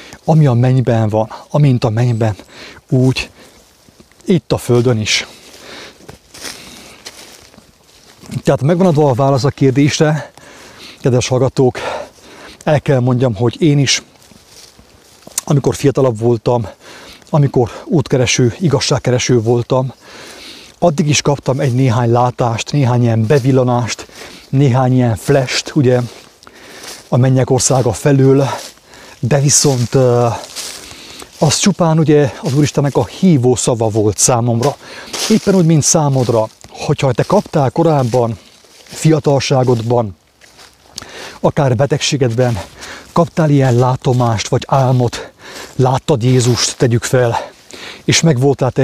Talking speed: 105 wpm